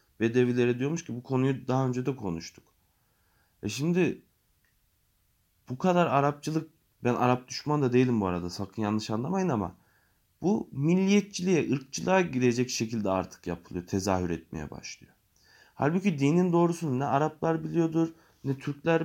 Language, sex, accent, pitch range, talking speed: Turkish, male, native, 100-145 Hz, 135 wpm